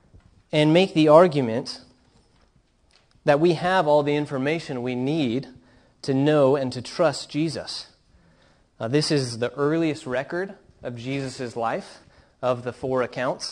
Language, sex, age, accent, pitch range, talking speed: English, male, 30-49, American, 120-150 Hz, 140 wpm